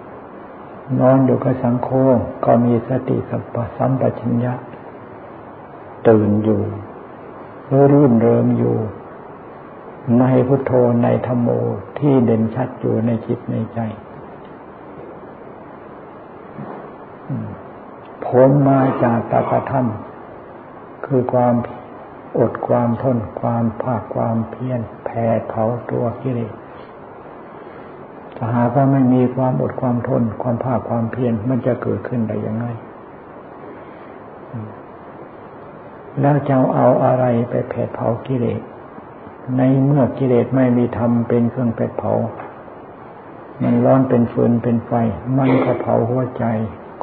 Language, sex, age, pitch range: Thai, male, 60-79, 115-130 Hz